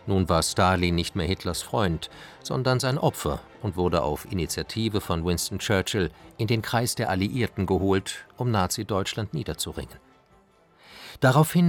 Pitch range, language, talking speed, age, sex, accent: 90-125 Hz, German, 140 wpm, 50-69, male, German